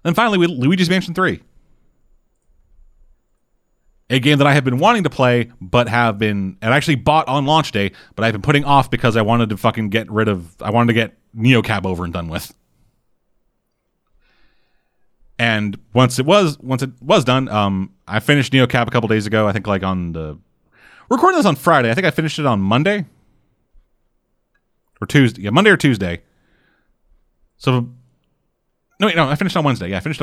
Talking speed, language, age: 195 wpm, English, 30-49